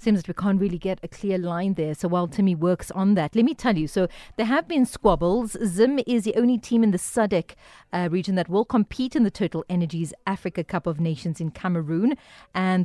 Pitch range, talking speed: 170-220 Hz, 230 wpm